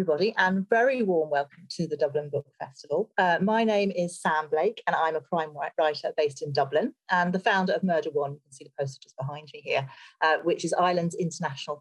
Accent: British